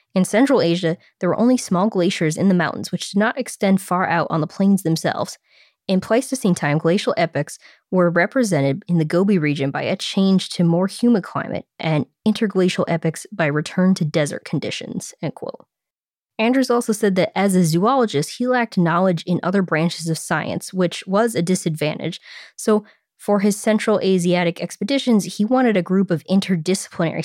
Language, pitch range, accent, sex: English, 170-210 Hz, American, female